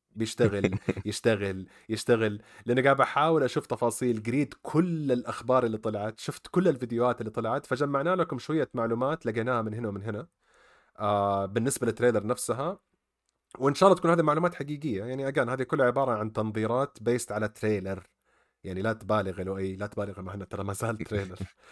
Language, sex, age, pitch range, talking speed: Arabic, male, 30-49, 105-140 Hz, 160 wpm